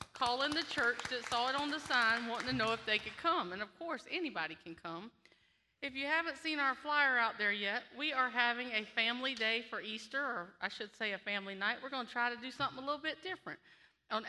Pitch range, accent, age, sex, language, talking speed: 205-270 Hz, American, 40-59, female, English, 245 wpm